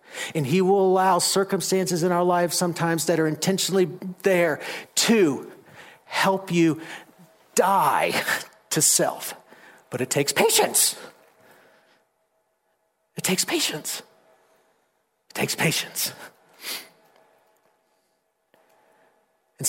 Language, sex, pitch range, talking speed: English, male, 150-185 Hz, 90 wpm